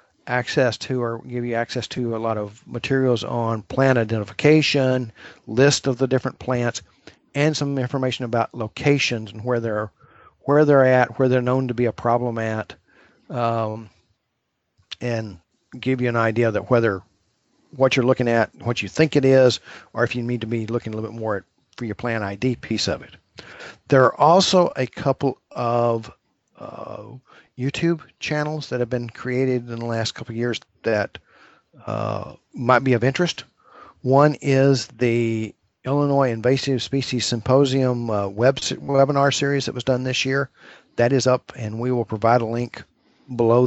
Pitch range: 115-130 Hz